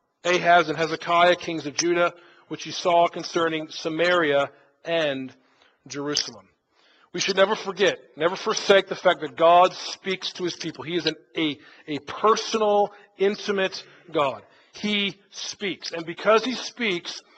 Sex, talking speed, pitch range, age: male, 140 wpm, 160-195 Hz, 40-59